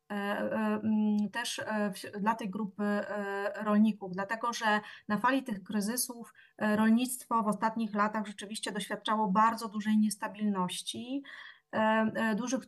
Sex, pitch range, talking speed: female, 195-220 Hz, 100 wpm